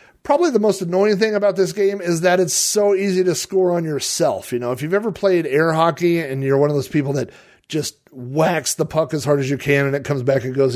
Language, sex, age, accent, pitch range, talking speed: English, male, 40-59, American, 135-175 Hz, 260 wpm